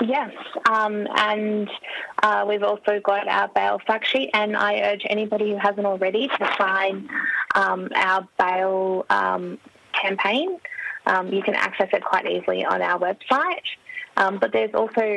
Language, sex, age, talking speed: English, female, 20-39, 155 wpm